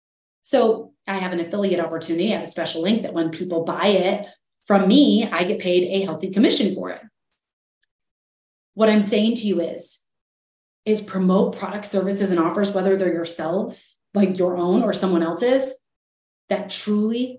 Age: 30-49